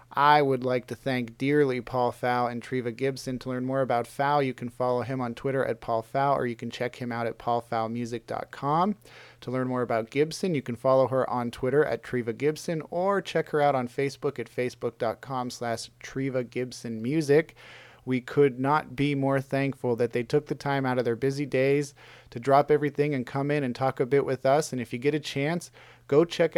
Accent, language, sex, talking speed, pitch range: American, English, male, 215 wpm, 120-140 Hz